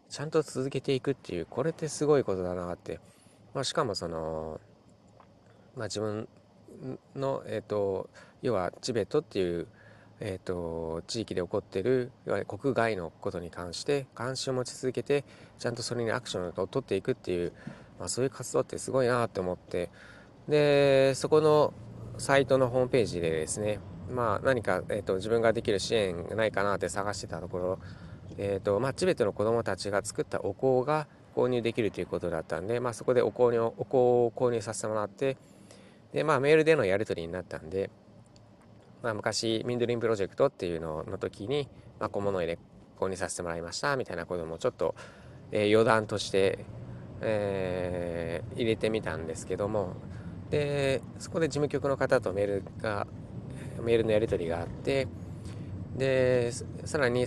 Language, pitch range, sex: Japanese, 95-130 Hz, male